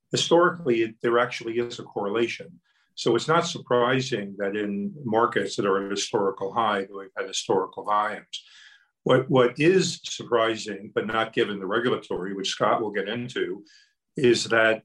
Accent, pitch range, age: American, 105-130 Hz, 50-69